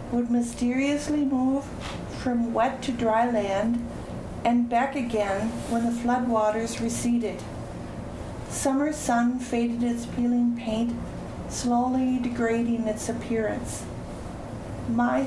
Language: English